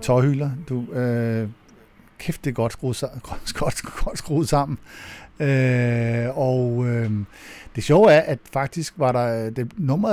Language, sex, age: Danish, male, 50-69